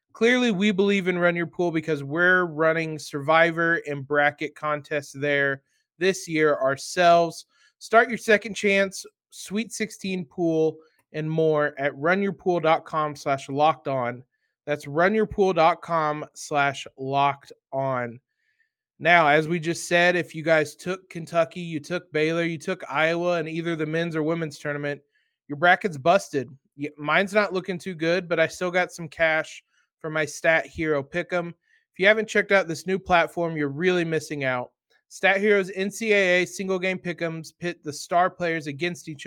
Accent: American